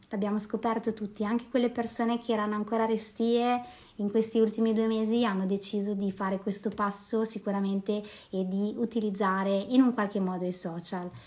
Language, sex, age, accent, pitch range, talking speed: Italian, female, 30-49, native, 195-235 Hz, 165 wpm